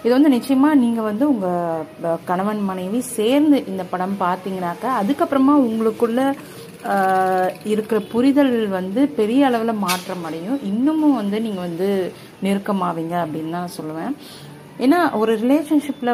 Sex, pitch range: female, 180-235 Hz